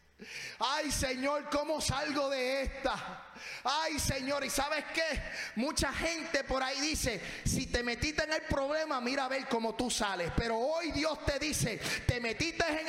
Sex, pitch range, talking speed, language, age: male, 225-290 Hz, 170 wpm, Spanish, 30-49